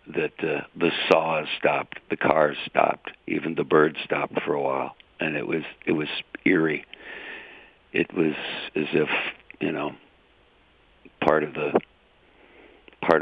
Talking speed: 140 wpm